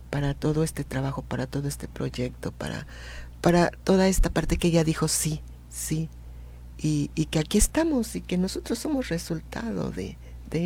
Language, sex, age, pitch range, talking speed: Spanish, female, 50-69, 135-170 Hz, 170 wpm